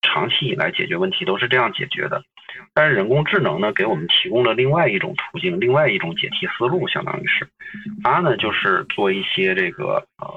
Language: Chinese